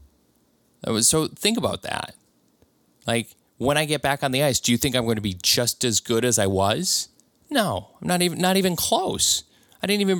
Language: English